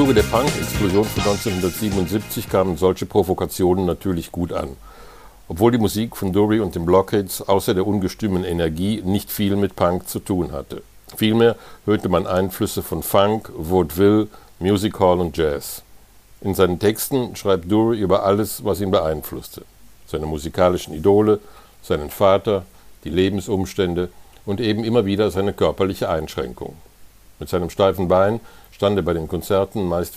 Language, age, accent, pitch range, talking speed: German, 60-79, German, 90-105 Hz, 150 wpm